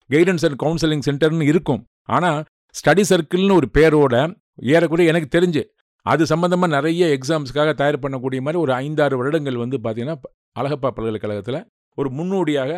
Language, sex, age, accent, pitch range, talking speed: English, male, 50-69, Indian, 125-155 Hz, 140 wpm